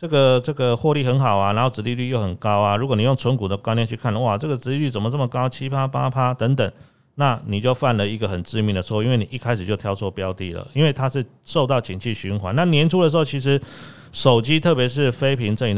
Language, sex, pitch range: Chinese, male, 110-140 Hz